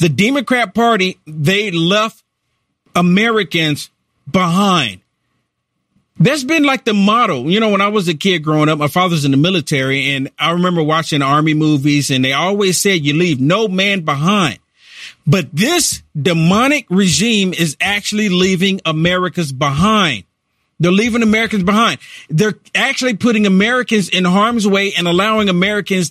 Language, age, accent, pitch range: English, 40-59, American, 165-230 Hz